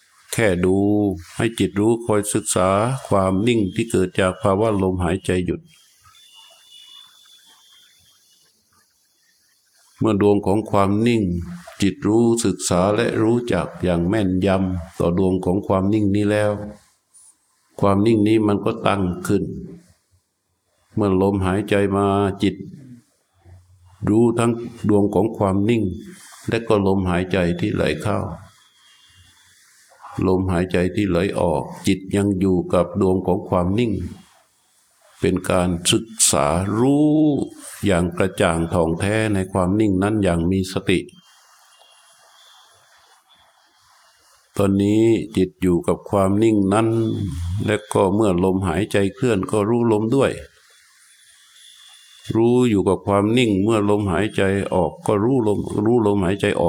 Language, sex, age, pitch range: Thai, male, 60-79, 95-110 Hz